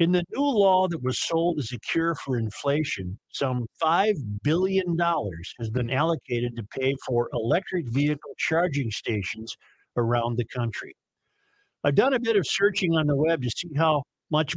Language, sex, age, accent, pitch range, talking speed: English, male, 50-69, American, 120-170 Hz, 170 wpm